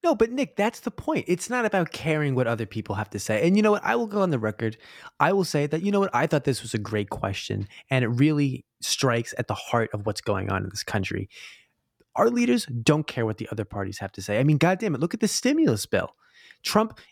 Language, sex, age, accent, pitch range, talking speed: English, male, 20-39, American, 115-165 Hz, 260 wpm